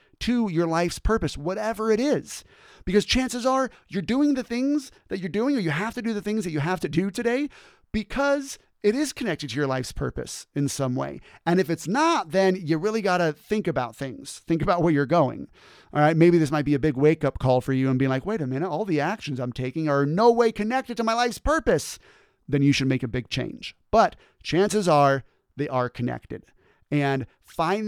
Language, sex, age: English, male, 30-49